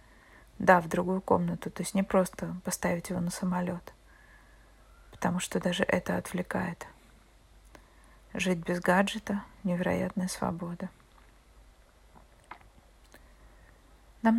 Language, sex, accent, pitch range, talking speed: Russian, female, native, 175-195 Hz, 95 wpm